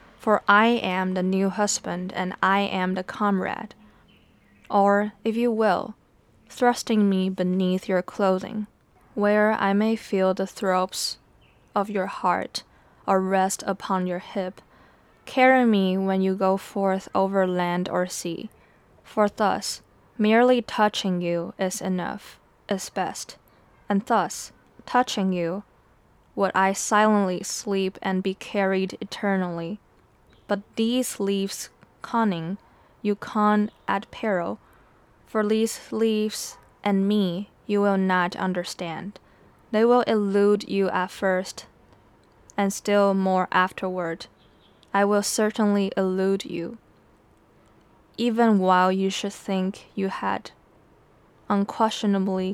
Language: English